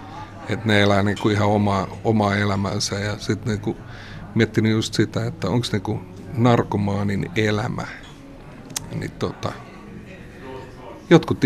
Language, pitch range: Finnish, 100-120 Hz